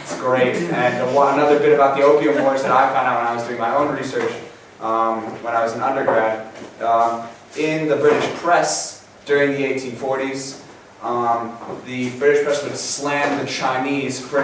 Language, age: English, 20-39